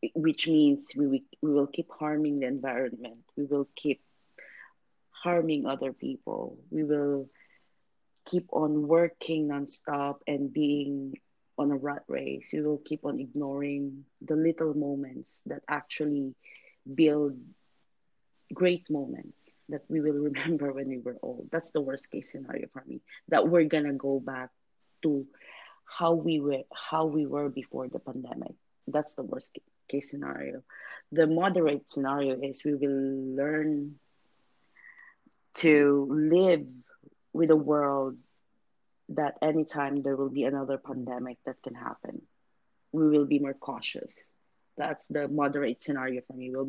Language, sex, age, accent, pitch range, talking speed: English, female, 30-49, Filipino, 135-155 Hz, 145 wpm